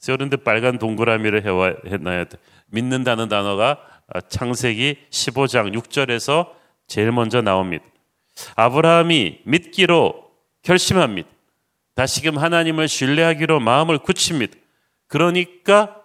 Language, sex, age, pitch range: Korean, male, 40-59, 120-165 Hz